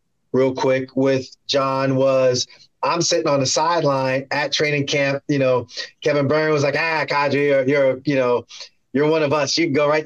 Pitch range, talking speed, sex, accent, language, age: 135-160 Hz, 195 wpm, male, American, English, 30-49